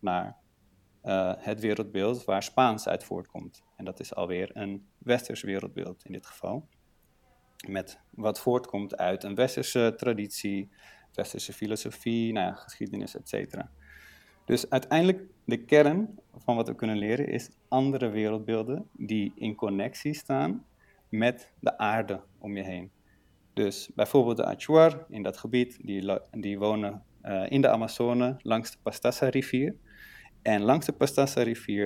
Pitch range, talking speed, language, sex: 100-130 Hz, 140 wpm, Dutch, male